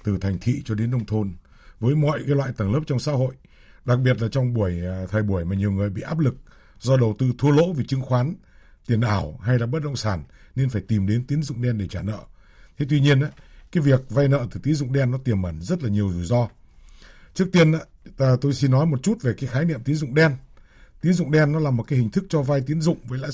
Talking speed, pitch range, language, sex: 265 wpm, 110-150 Hz, Vietnamese, male